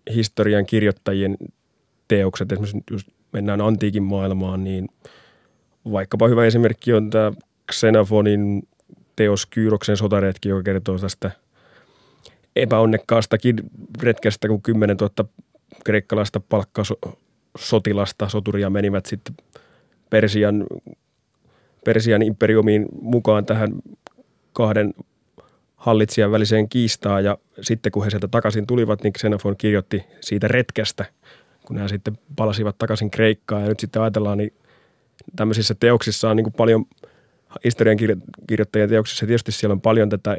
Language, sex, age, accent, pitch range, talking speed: Finnish, male, 30-49, native, 105-110 Hz, 110 wpm